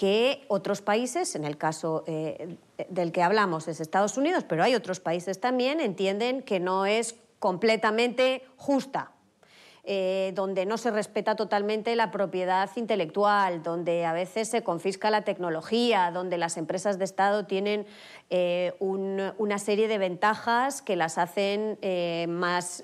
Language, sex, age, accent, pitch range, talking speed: Spanish, female, 30-49, Spanish, 180-245 Hz, 150 wpm